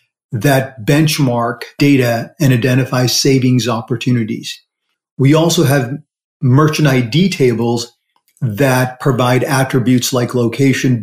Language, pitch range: English, 125-145 Hz